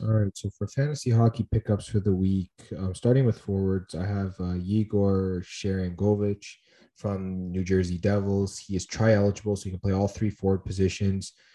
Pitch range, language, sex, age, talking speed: 95-105 Hz, English, male, 20-39, 175 wpm